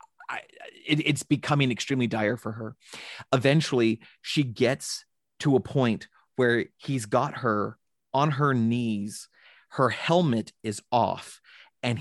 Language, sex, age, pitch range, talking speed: English, male, 30-49, 105-130 Hz, 120 wpm